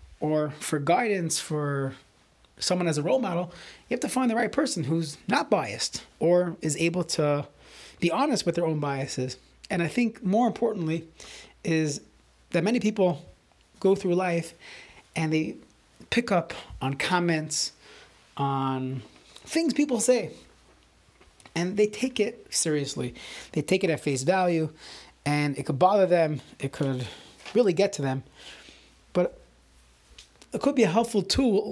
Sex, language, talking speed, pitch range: male, English, 150 wpm, 145-205 Hz